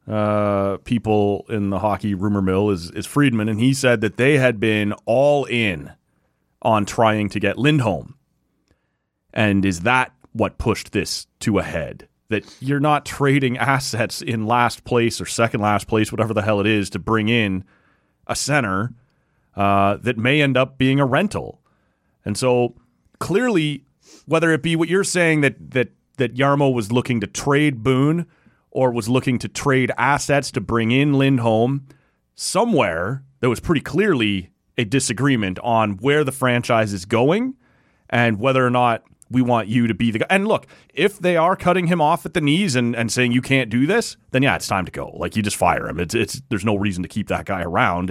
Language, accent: English, American